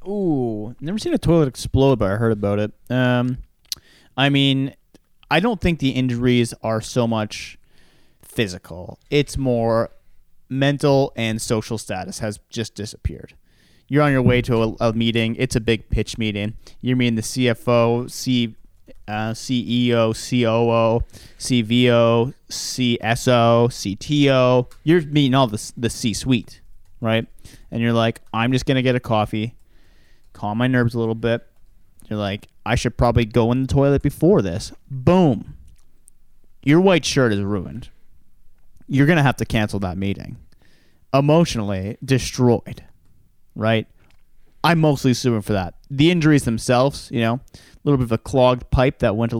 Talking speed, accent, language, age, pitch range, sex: 155 wpm, American, English, 30-49, 110-130 Hz, male